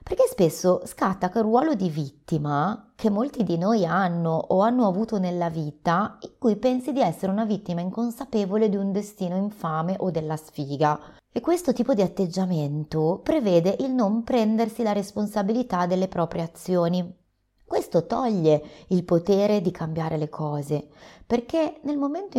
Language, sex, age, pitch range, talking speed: Italian, female, 30-49, 160-225 Hz, 155 wpm